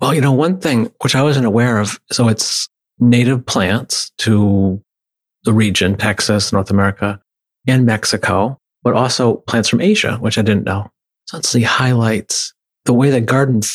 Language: English